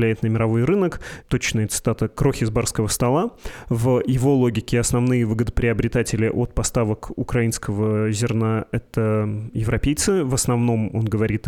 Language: Russian